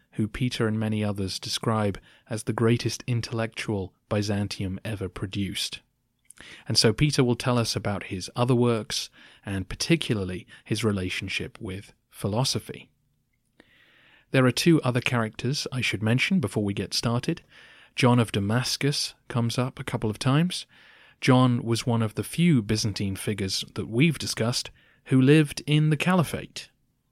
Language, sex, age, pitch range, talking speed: English, male, 30-49, 100-125 Hz, 145 wpm